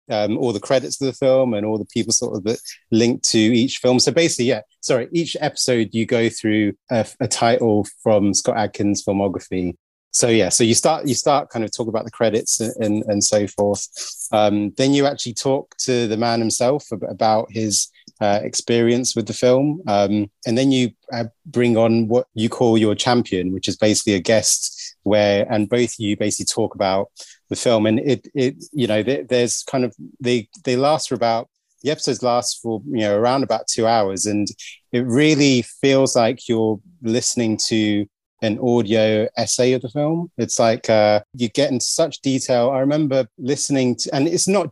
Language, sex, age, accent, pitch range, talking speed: English, male, 30-49, British, 105-125 Hz, 195 wpm